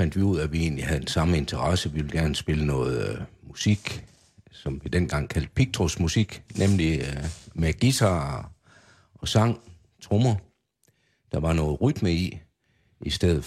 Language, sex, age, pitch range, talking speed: Danish, male, 60-79, 75-105 Hz, 165 wpm